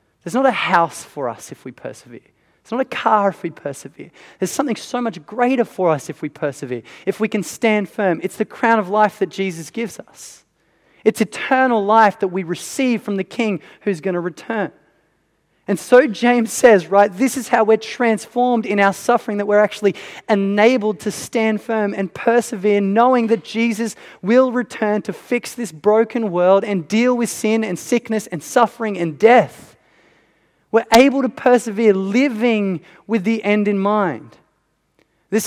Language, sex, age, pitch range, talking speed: English, male, 20-39, 190-235 Hz, 180 wpm